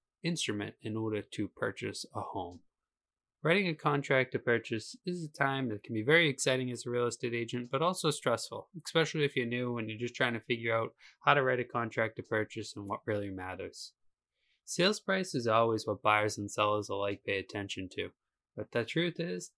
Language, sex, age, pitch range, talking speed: English, male, 20-39, 110-155 Hz, 200 wpm